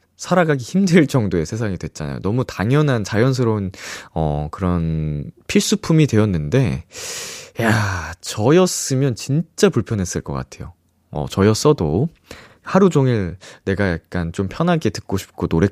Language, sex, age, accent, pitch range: Korean, male, 20-39, native, 90-150 Hz